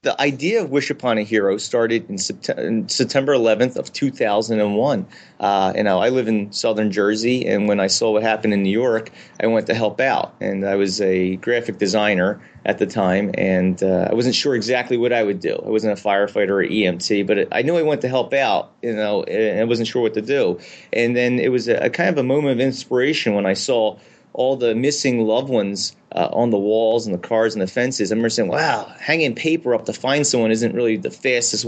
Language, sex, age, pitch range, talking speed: English, male, 30-49, 105-135 Hz, 230 wpm